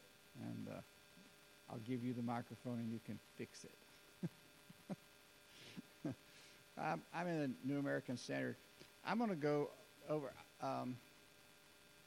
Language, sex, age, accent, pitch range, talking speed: English, male, 50-69, American, 125-160 Hz, 125 wpm